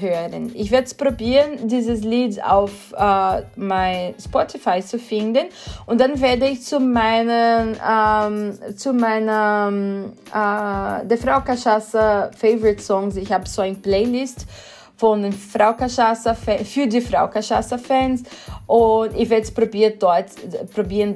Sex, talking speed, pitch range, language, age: female, 135 wpm, 200-240 Hz, Portuguese, 20-39